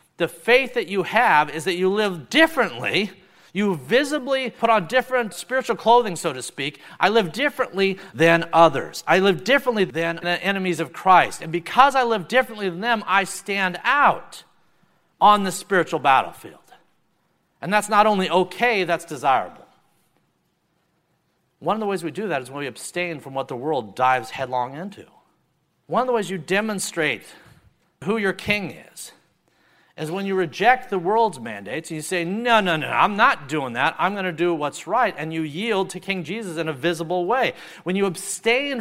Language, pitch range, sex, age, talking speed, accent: English, 165-220 Hz, male, 50-69, 180 wpm, American